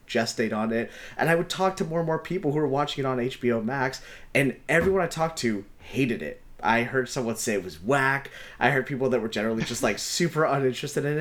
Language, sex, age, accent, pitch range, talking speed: English, male, 30-49, American, 110-150 Hz, 235 wpm